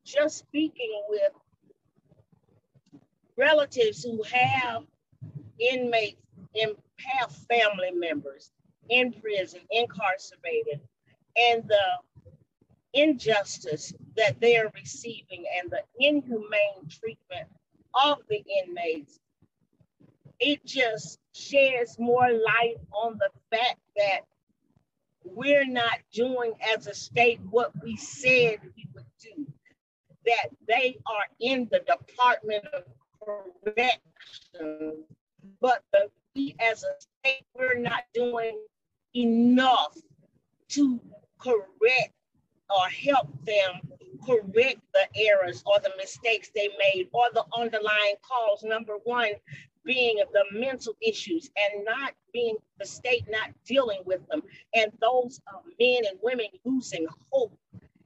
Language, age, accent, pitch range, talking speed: English, 40-59, American, 195-275 Hz, 105 wpm